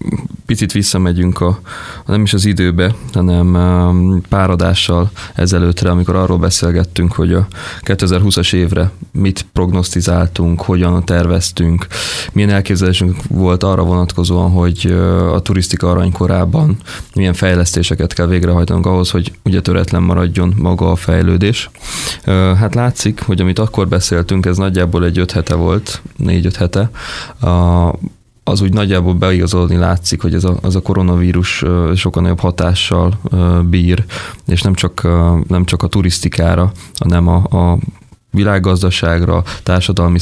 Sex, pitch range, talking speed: male, 90-95 Hz, 125 wpm